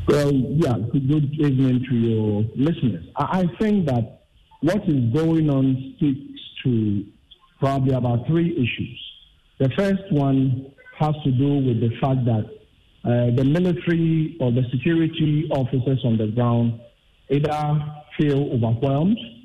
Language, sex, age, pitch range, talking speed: English, male, 50-69, 120-145 Hz, 135 wpm